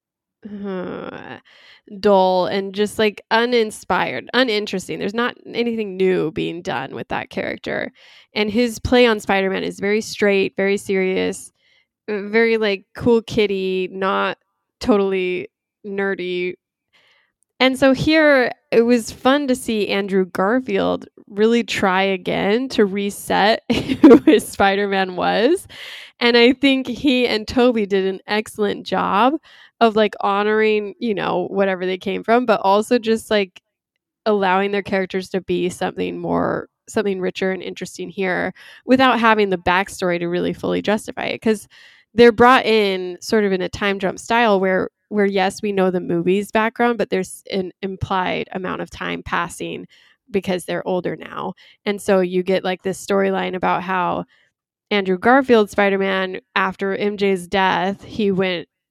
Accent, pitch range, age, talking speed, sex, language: American, 190-225 Hz, 10-29, 145 wpm, female, English